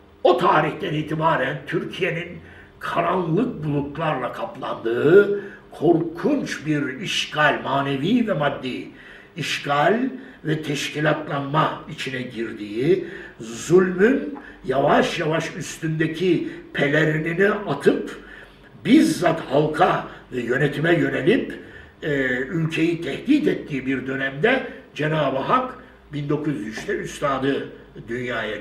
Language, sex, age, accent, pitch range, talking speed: Turkish, male, 60-79, native, 140-210 Hz, 80 wpm